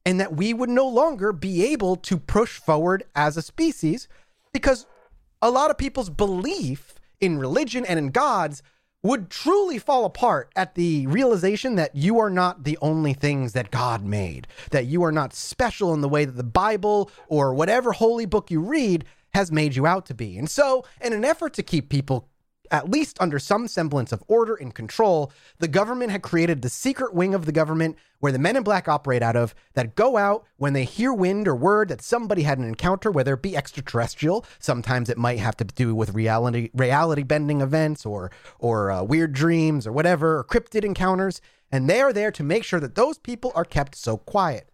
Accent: American